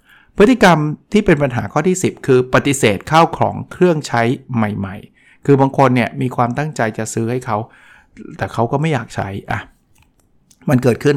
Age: 60-79